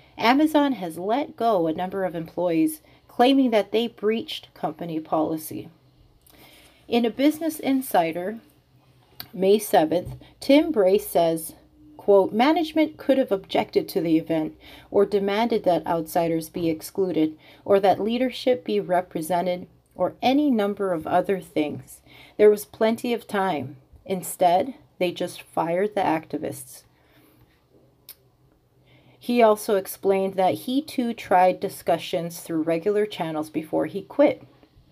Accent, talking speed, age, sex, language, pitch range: American, 125 wpm, 40-59, female, English, 160-220 Hz